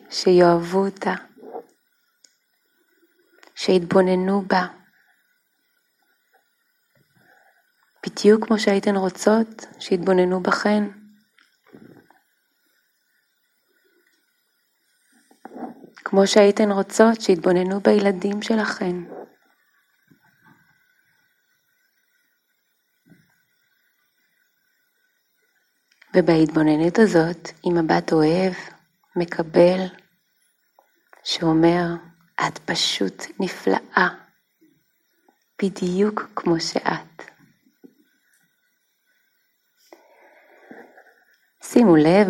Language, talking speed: Hebrew, 45 wpm